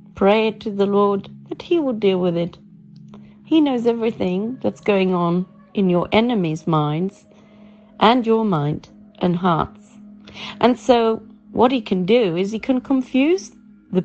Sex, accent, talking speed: female, British, 160 wpm